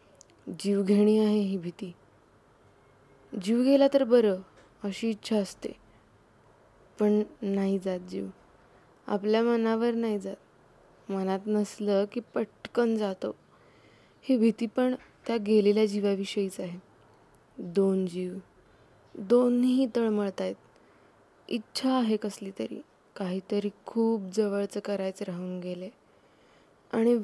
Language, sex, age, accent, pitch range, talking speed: Marathi, female, 20-39, native, 195-240 Hz, 105 wpm